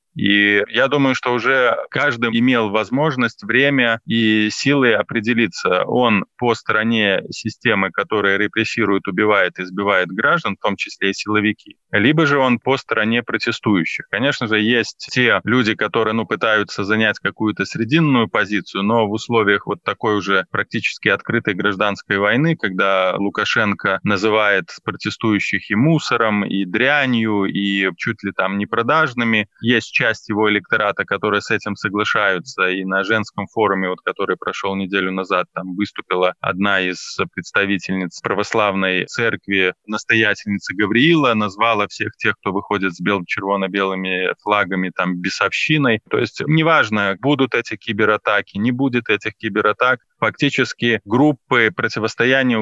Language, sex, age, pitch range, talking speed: Russian, male, 20-39, 100-120 Hz, 130 wpm